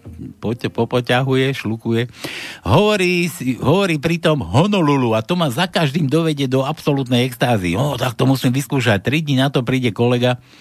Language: Slovak